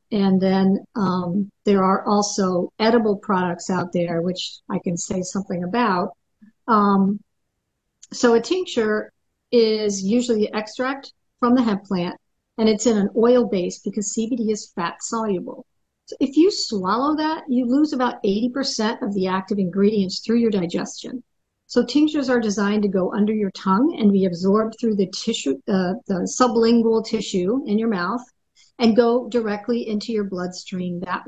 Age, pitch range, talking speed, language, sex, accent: 50-69, 190-235 Hz, 160 wpm, English, female, American